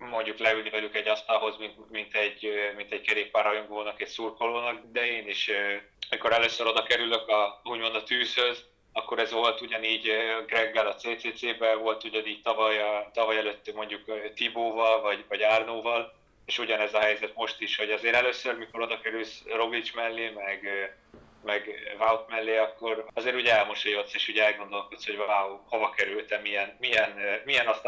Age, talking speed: 20-39, 160 wpm